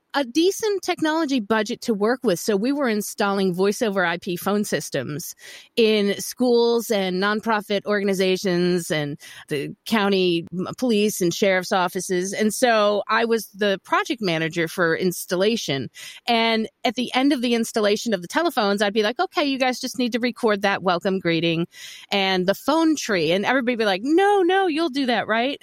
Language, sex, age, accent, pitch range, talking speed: English, female, 30-49, American, 200-260 Hz, 175 wpm